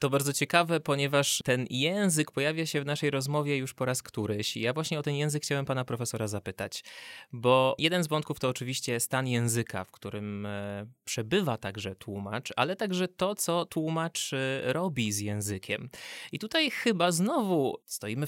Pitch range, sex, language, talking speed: 110-150 Hz, male, Polish, 165 wpm